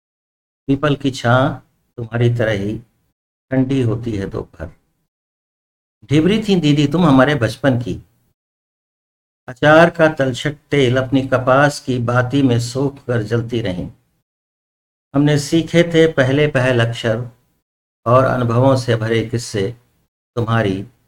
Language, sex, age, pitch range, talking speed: Hindi, male, 60-79, 115-140 Hz, 120 wpm